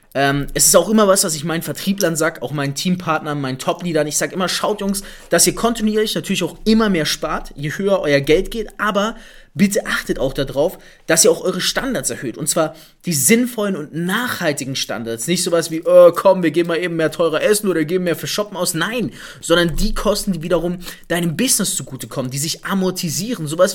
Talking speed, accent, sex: 210 wpm, German, male